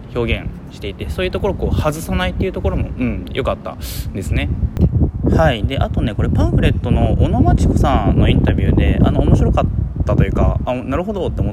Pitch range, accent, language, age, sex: 90-125 Hz, native, Japanese, 20-39, male